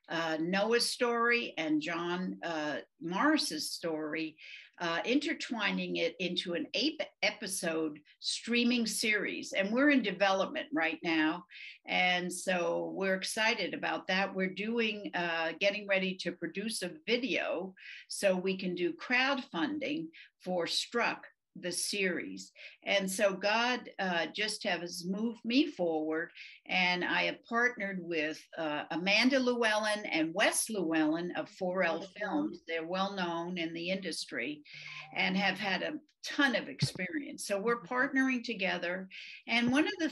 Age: 60-79